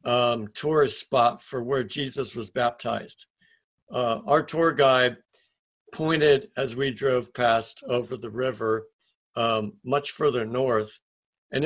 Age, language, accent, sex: 60-79, English, American, male